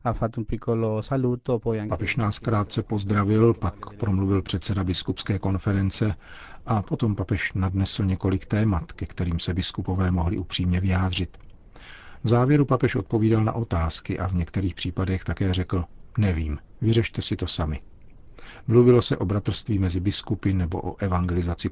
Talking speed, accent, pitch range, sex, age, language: 135 wpm, native, 90-110 Hz, male, 40-59, Czech